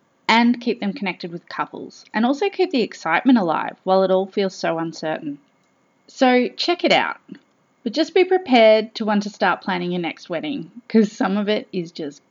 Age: 30-49